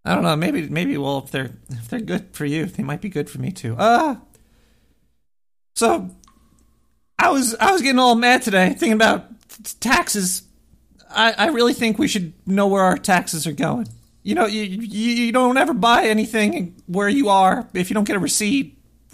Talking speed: 200 wpm